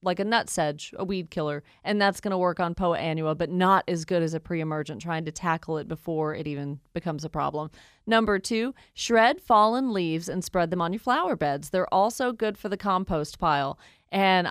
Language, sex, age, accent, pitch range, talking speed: English, female, 30-49, American, 160-195 Hz, 210 wpm